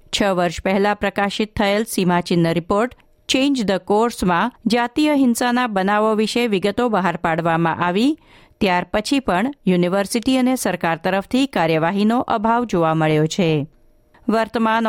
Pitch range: 180-245 Hz